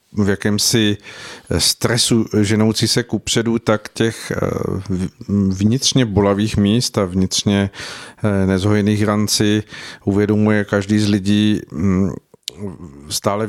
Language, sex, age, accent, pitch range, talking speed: Czech, male, 50-69, native, 100-110 Hz, 95 wpm